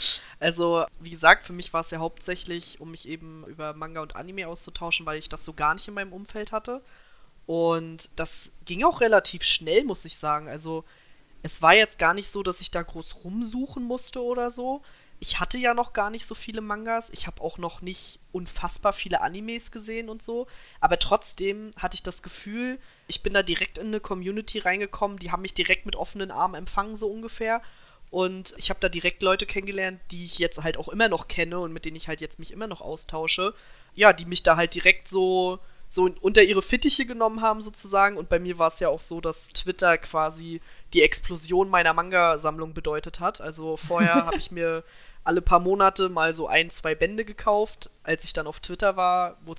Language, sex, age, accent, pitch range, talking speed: German, female, 20-39, German, 165-210 Hz, 210 wpm